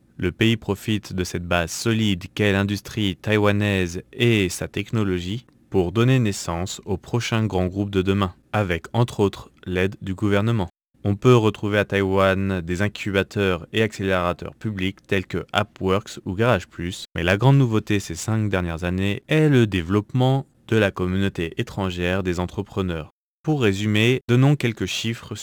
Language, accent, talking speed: French, French, 155 wpm